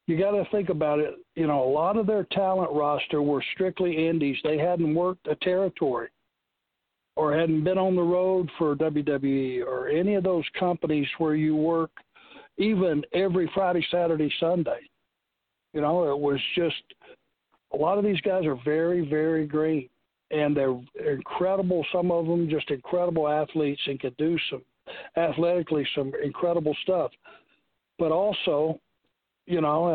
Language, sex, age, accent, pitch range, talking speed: English, male, 60-79, American, 145-175 Hz, 155 wpm